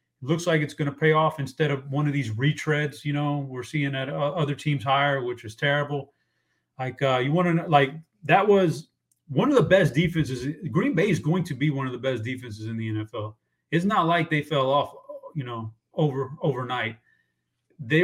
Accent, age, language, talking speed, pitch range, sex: American, 30-49, English, 205 wpm, 130-160 Hz, male